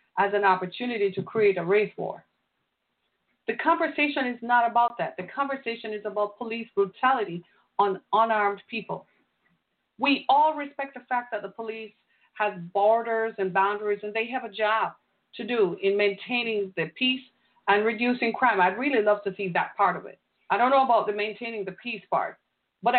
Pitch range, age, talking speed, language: 205-260 Hz, 40-59, 175 wpm, English